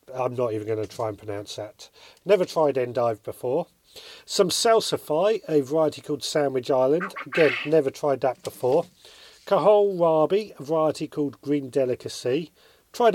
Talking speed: 150 wpm